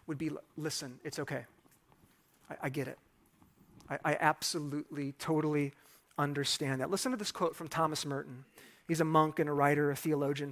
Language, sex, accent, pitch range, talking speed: English, male, American, 150-195 Hz, 170 wpm